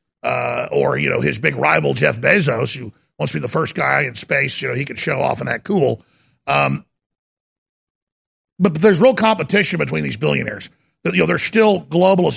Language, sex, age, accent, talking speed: English, male, 50-69, American, 205 wpm